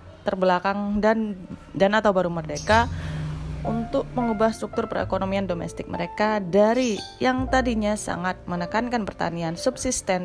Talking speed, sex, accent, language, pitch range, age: 110 wpm, female, native, Indonesian, 165-215 Hz, 20-39